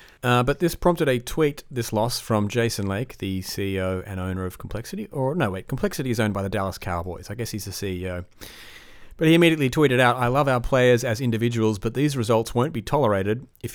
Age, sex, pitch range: 30-49, male, 100-140 Hz